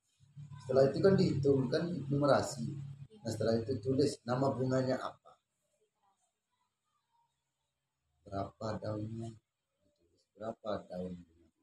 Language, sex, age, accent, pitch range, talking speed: Indonesian, male, 30-49, native, 80-135 Hz, 85 wpm